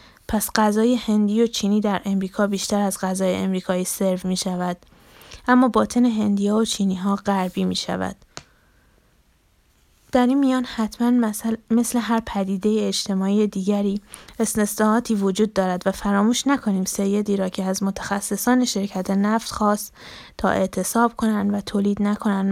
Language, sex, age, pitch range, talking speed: Persian, female, 20-39, 195-220 Hz, 145 wpm